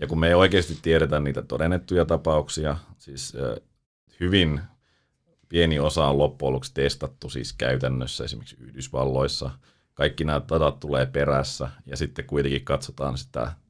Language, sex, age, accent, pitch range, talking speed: Finnish, male, 30-49, native, 70-80 Hz, 130 wpm